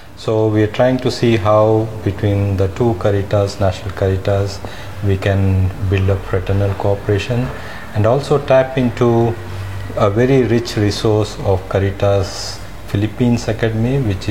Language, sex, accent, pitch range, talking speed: Filipino, male, Indian, 95-110 Hz, 130 wpm